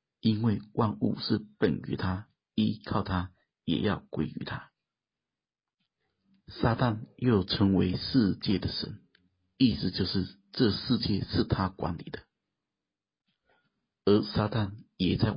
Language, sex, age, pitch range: Chinese, male, 50-69, 90-110 Hz